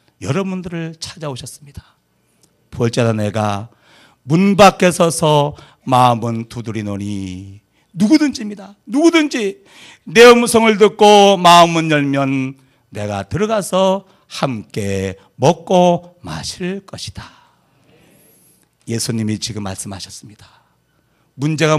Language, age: Korean, 40-59